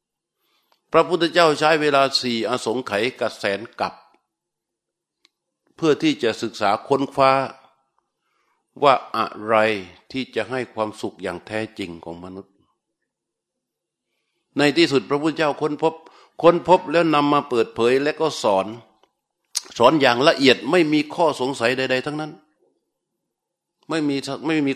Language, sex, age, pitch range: Thai, male, 60-79, 115-150 Hz